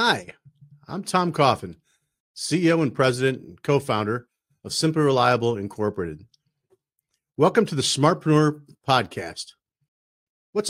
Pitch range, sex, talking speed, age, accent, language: 120-155 Hz, male, 105 wpm, 50-69, American, English